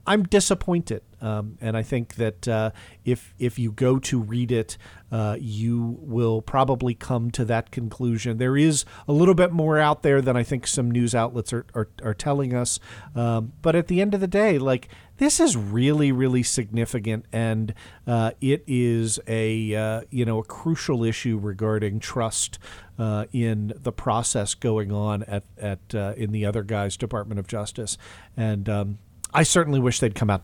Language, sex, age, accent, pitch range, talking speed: English, male, 40-59, American, 110-155 Hz, 185 wpm